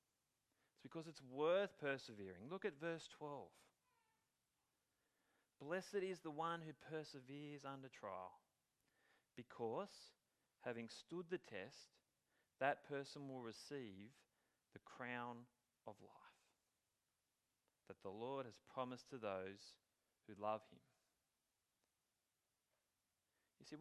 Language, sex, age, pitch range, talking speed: English, male, 30-49, 125-175 Hz, 105 wpm